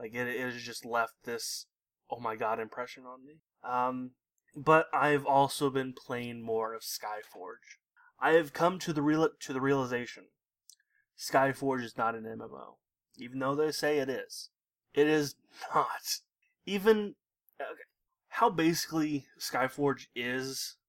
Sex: male